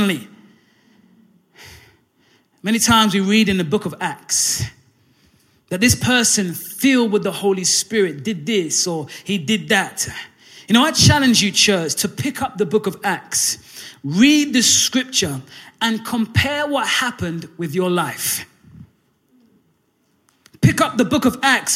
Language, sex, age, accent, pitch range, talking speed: English, male, 20-39, British, 195-255 Hz, 145 wpm